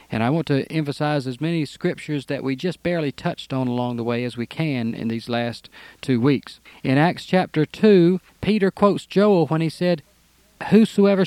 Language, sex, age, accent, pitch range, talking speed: English, male, 40-59, American, 140-195 Hz, 190 wpm